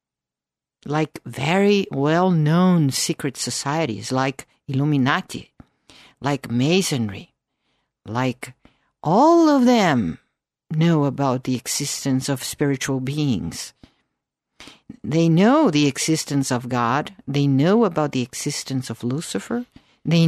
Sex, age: female, 50-69